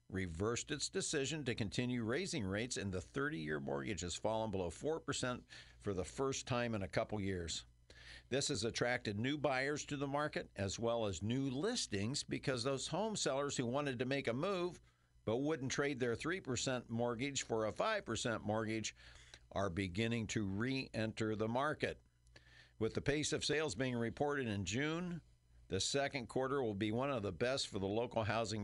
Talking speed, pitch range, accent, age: 180 wpm, 100-135 Hz, American, 50-69